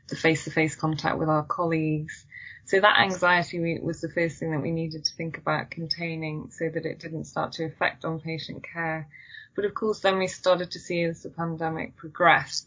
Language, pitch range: English, 155-170 Hz